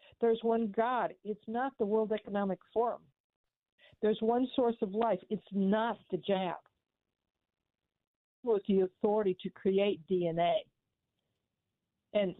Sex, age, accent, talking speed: female, 60-79, American, 120 wpm